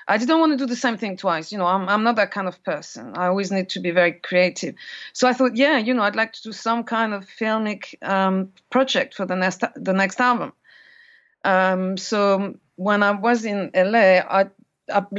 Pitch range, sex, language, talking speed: 185-230 Hz, female, English, 220 wpm